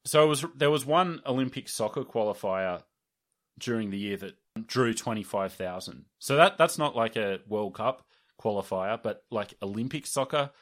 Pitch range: 100-120 Hz